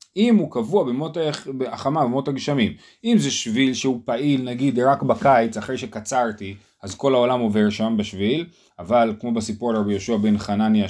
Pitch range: 110-140 Hz